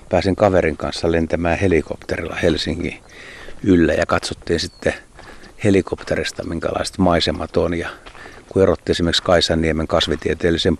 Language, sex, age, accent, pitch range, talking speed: Finnish, male, 60-79, native, 80-90 Hz, 110 wpm